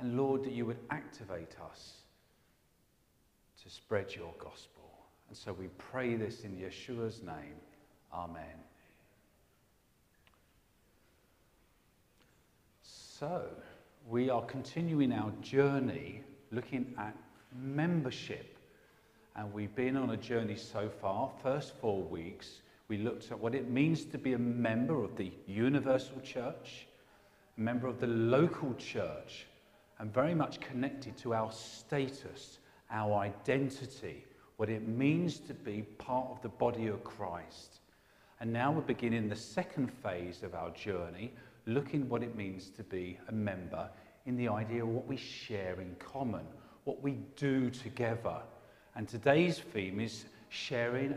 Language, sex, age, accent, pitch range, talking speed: English, male, 40-59, British, 105-130 Hz, 135 wpm